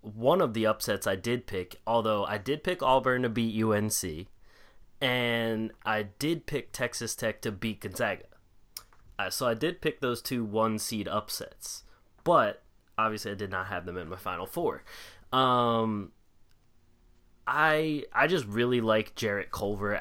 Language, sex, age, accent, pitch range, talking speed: English, male, 20-39, American, 100-120 Hz, 160 wpm